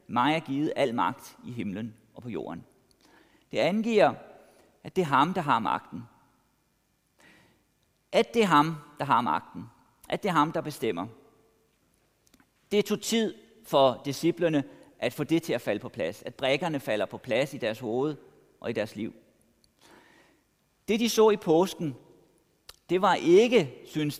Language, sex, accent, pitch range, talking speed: Danish, male, native, 145-205 Hz, 160 wpm